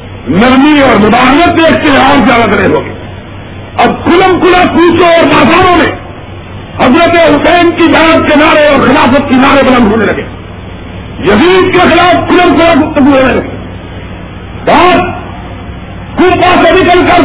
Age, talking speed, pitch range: 50-69, 140 wpm, 205-335 Hz